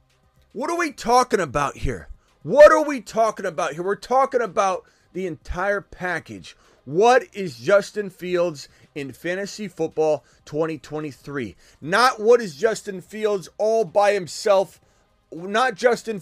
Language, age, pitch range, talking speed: English, 30-49, 160-220 Hz, 135 wpm